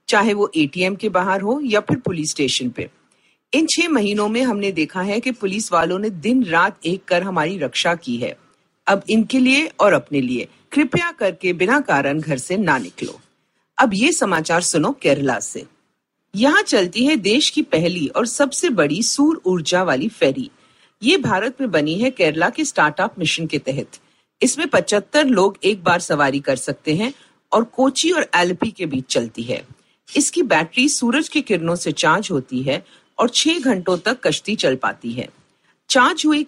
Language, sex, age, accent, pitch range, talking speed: Hindi, female, 50-69, native, 160-260 Hz, 180 wpm